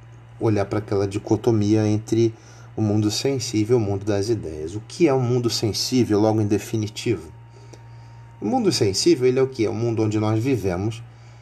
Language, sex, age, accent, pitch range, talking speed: Portuguese, male, 30-49, Brazilian, 105-125 Hz, 195 wpm